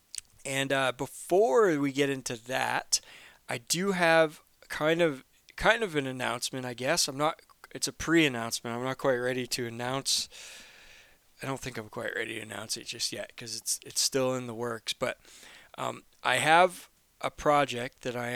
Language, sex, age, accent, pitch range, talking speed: English, male, 20-39, American, 125-150 Hz, 180 wpm